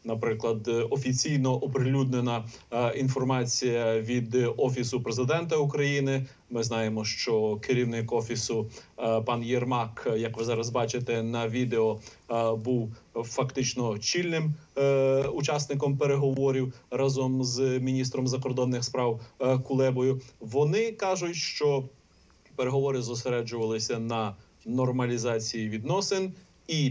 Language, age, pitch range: Ukrainian, 30-49, 120-140 Hz